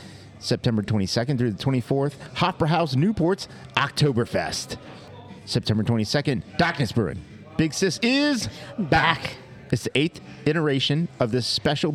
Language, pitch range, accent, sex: English, 115-150 Hz, American, male